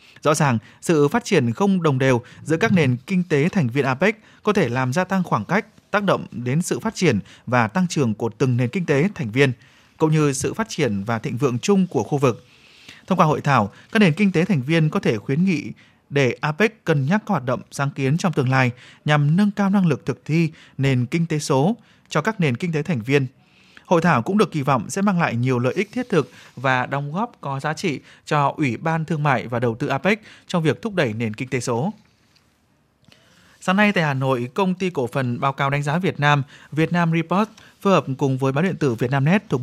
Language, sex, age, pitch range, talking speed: Vietnamese, male, 20-39, 130-180 Hz, 240 wpm